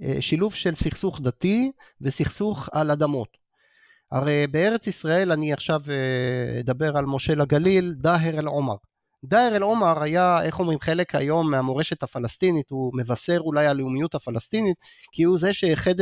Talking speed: 140 wpm